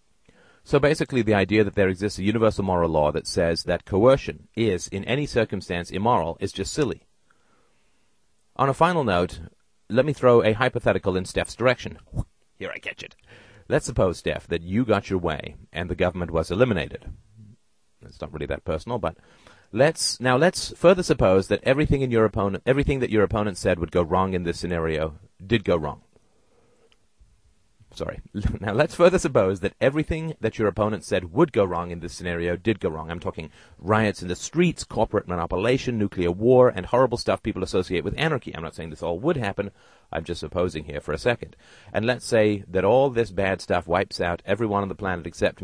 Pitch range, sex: 90-120 Hz, male